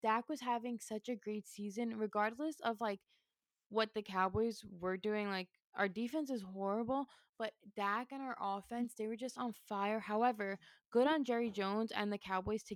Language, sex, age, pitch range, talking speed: English, female, 20-39, 205-255 Hz, 185 wpm